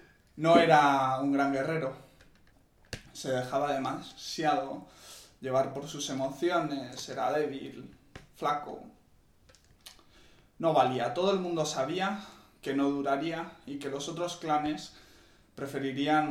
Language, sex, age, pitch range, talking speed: Spanish, male, 20-39, 130-150 Hz, 110 wpm